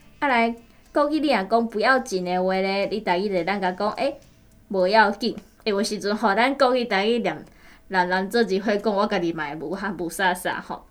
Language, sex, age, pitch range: Chinese, female, 20-39, 190-250 Hz